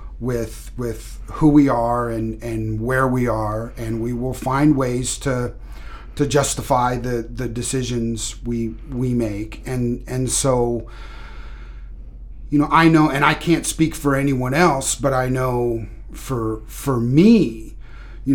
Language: English